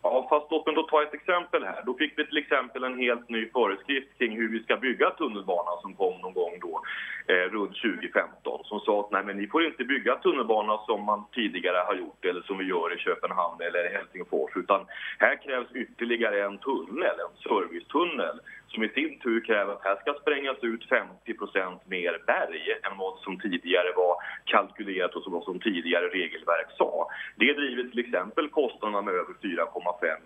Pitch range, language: 110-155 Hz, English